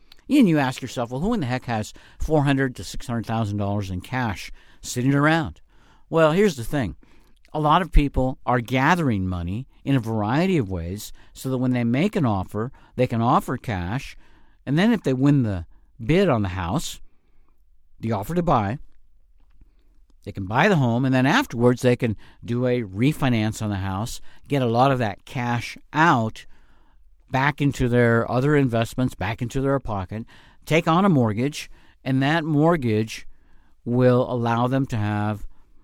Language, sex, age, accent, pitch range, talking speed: English, male, 50-69, American, 105-140 Hz, 170 wpm